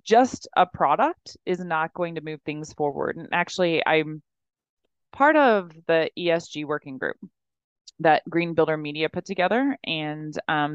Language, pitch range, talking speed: English, 150-170 Hz, 150 wpm